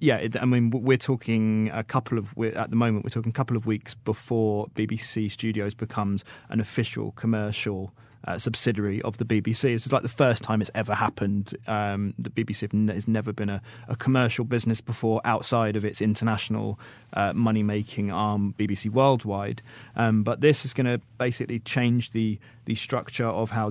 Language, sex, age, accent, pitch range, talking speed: English, male, 30-49, British, 105-120 Hz, 180 wpm